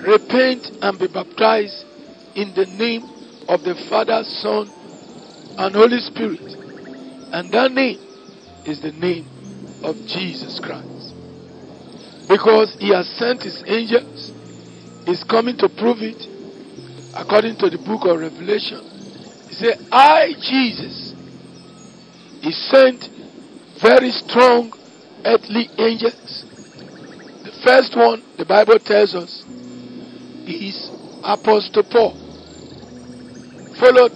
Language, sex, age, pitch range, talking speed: English, male, 50-69, 180-255 Hz, 105 wpm